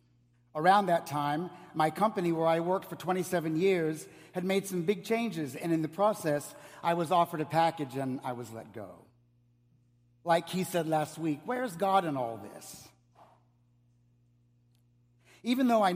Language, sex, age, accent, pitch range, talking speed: English, male, 60-79, American, 120-190 Hz, 160 wpm